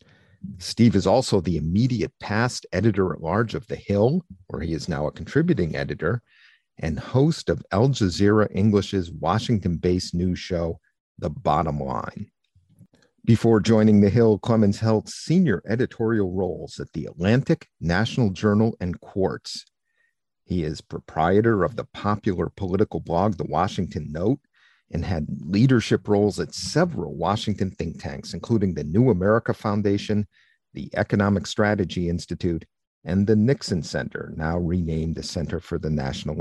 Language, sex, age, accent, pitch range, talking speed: English, male, 50-69, American, 90-110 Hz, 140 wpm